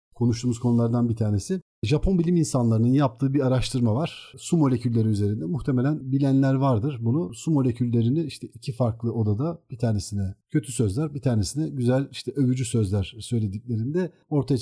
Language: Turkish